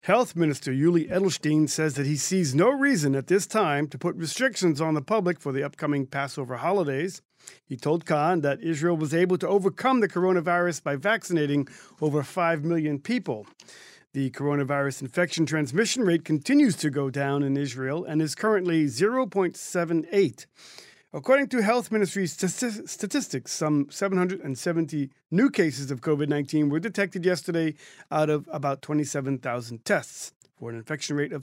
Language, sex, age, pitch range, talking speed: English, male, 40-59, 145-190 Hz, 155 wpm